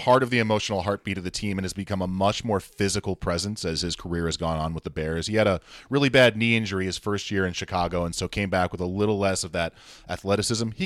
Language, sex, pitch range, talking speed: English, male, 90-110 Hz, 270 wpm